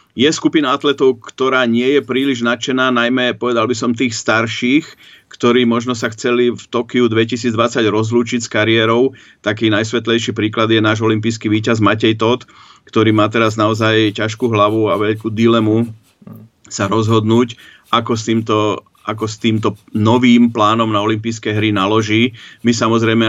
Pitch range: 105-120 Hz